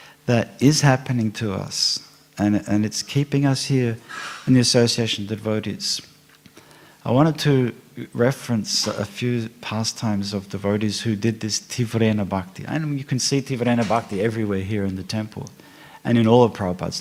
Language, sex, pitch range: English, male, 105-120 Hz